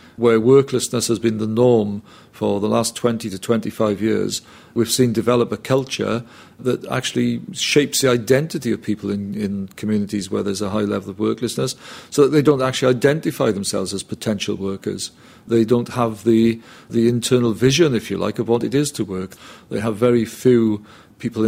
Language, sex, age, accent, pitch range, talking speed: English, male, 40-59, British, 105-125 Hz, 185 wpm